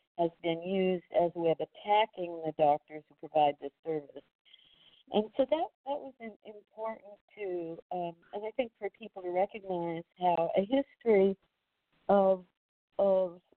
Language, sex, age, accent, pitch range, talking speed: English, female, 60-79, American, 170-205 Hz, 150 wpm